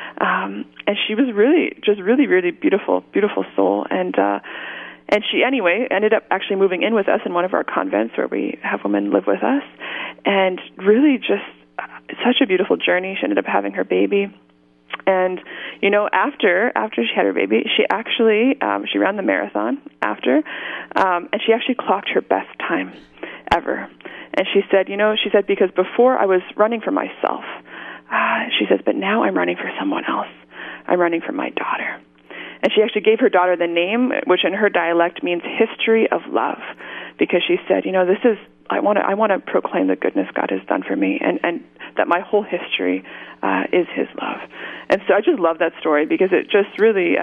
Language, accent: English, American